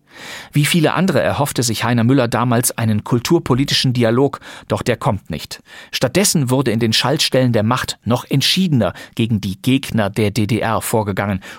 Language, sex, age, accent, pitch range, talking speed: German, male, 40-59, German, 110-140 Hz, 155 wpm